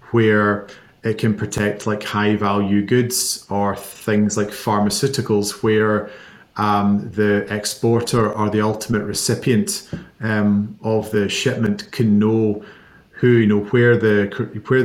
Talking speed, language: 130 wpm, English